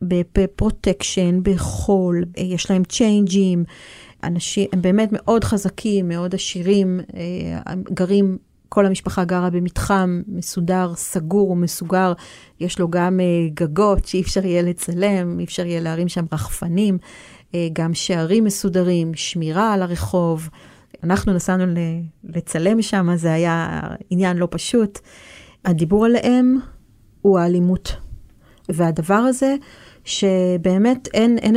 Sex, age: female, 40-59